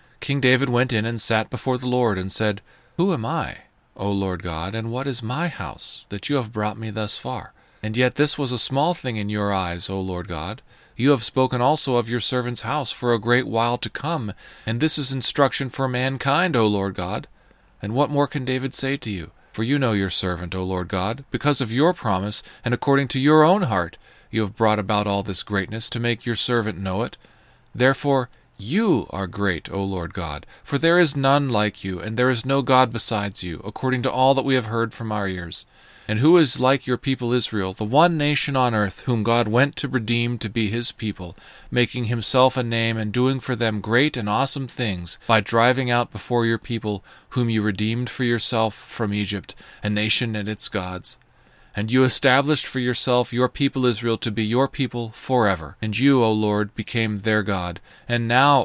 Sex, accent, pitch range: male, American, 105-130 Hz